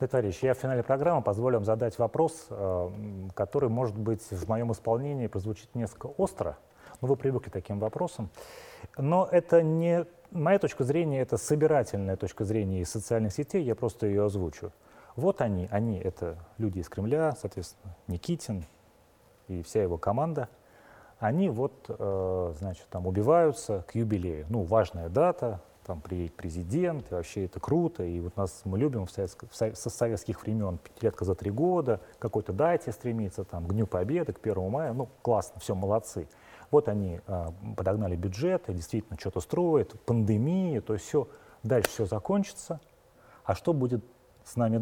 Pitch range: 95-130 Hz